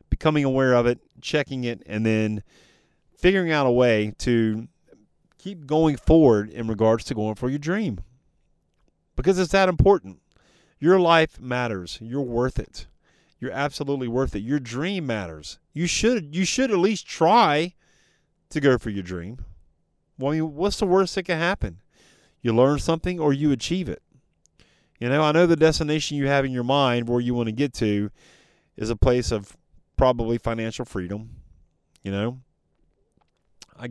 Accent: American